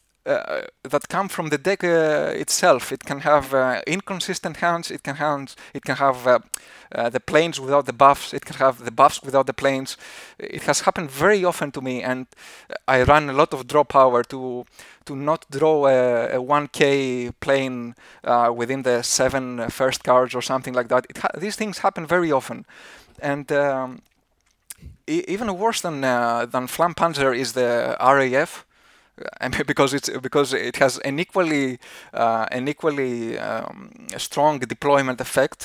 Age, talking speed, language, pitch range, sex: 20-39, 175 wpm, English, 130-165 Hz, male